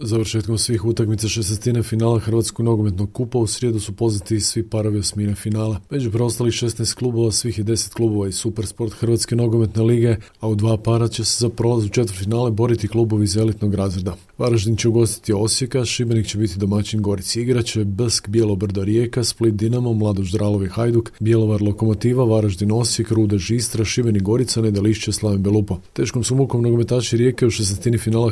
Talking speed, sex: 175 wpm, male